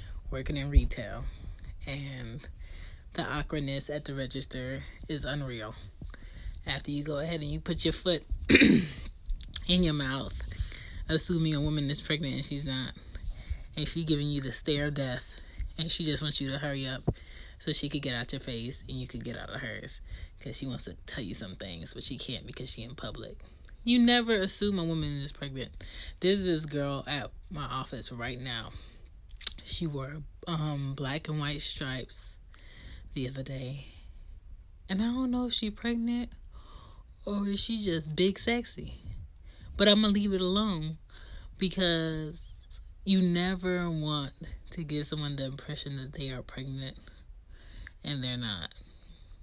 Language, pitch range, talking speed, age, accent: English, 105-155 Hz, 165 wpm, 20-39, American